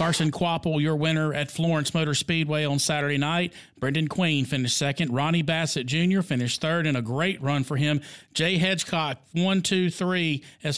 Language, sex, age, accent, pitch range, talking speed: English, male, 40-59, American, 140-165 Hz, 180 wpm